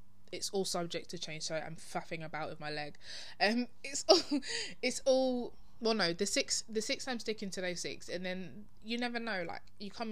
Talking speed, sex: 215 wpm, female